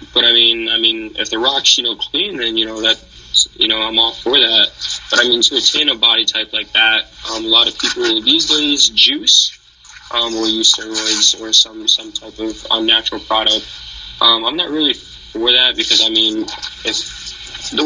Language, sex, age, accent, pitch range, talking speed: English, male, 20-39, American, 110-130 Hz, 210 wpm